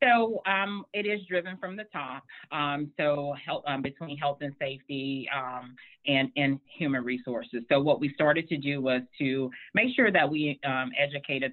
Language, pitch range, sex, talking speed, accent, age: English, 130-150 Hz, female, 175 wpm, American, 40-59